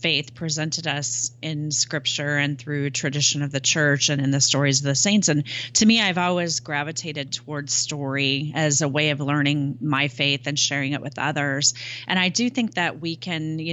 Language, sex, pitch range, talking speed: English, female, 145-170 Hz, 200 wpm